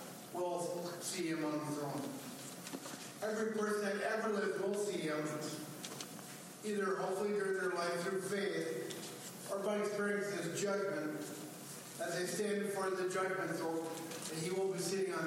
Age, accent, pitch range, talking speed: 50-69, American, 175-200 Hz, 155 wpm